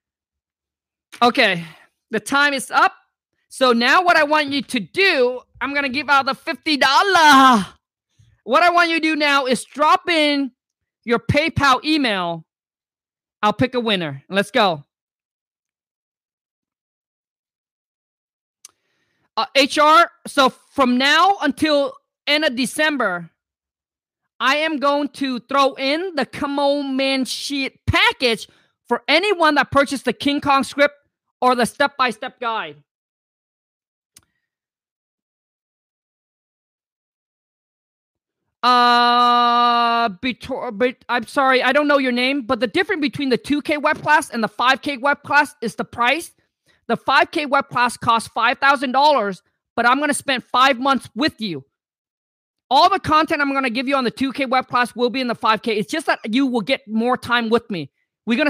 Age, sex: 40-59, male